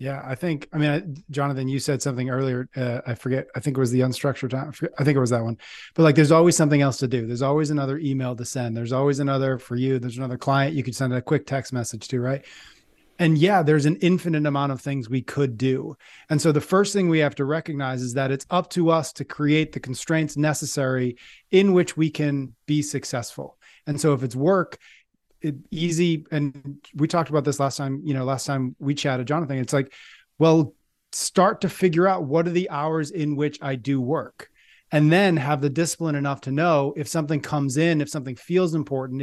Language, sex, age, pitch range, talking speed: English, male, 30-49, 135-160 Hz, 225 wpm